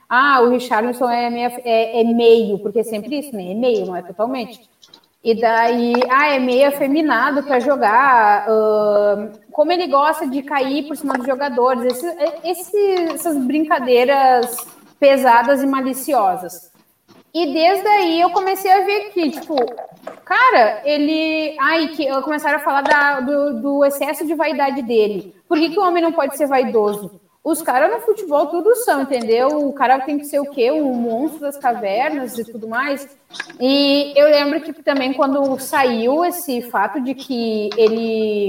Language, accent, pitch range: Portuguese, Brazilian, 240-310 Hz